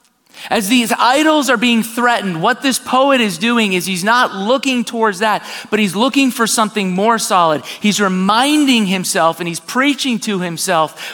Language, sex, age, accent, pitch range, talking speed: English, male, 30-49, American, 175-240 Hz, 170 wpm